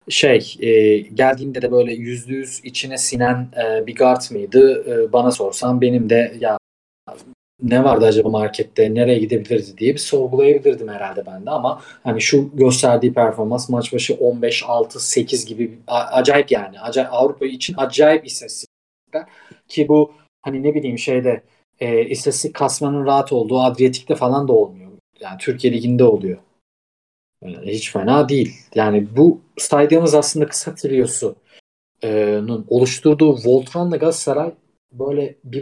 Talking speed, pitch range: 140 wpm, 125-170 Hz